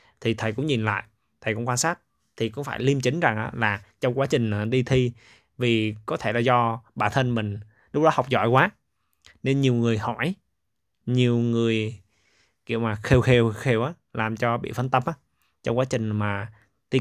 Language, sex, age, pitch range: Vietnamese, male, 20-39, 105-130 Hz